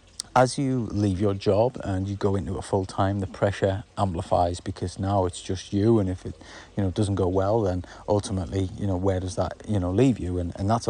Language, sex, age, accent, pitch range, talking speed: English, male, 30-49, British, 95-105 Hz, 230 wpm